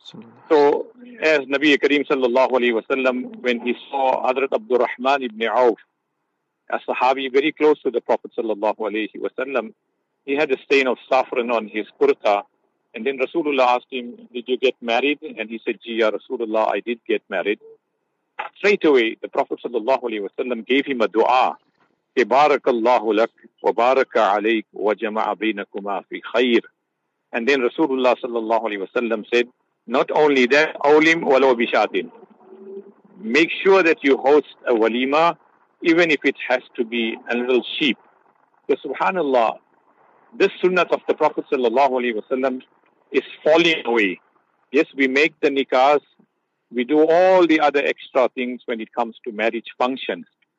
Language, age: English, 50-69